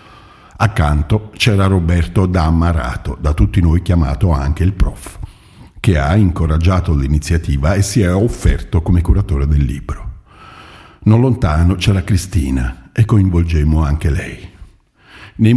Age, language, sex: 50-69, Italian, male